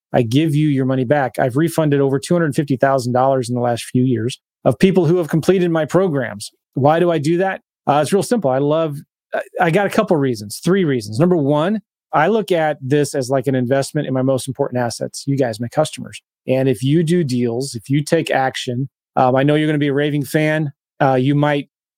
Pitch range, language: 135-175 Hz, English